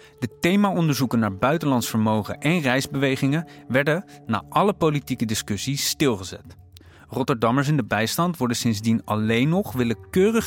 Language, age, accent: Dutch, 30-49, Dutch